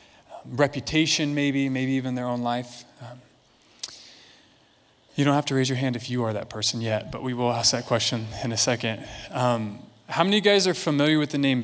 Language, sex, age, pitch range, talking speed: English, male, 20-39, 130-180 Hz, 210 wpm